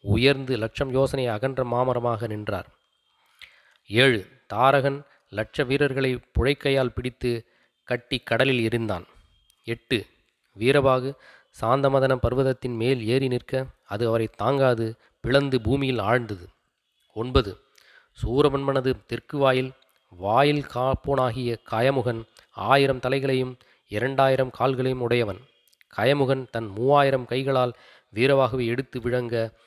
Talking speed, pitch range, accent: 95 wpm, 115-135 Hz, native